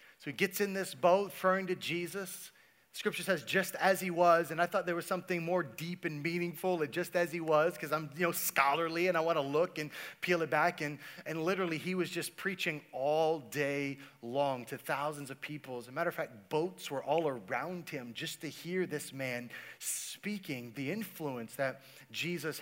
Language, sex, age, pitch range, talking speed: English, male, 30-49, 145-185 Hz, 205 wpm